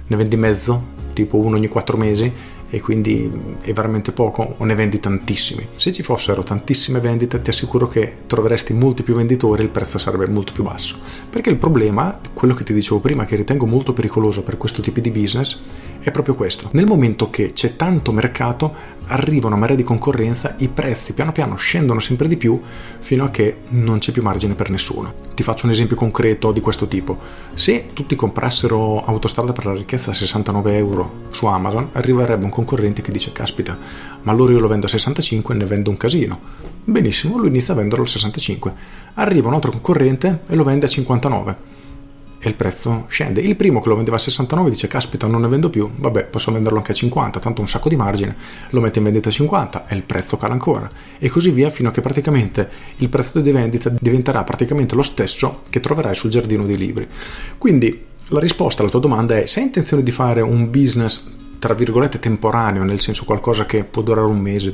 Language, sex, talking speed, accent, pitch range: Italian, male, 205 wpm, native, 105-125 Hz